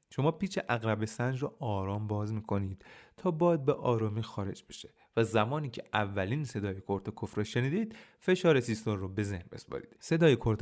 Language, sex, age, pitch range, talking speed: Persian, male, 30-49, 100-145 Hz, 165 wpm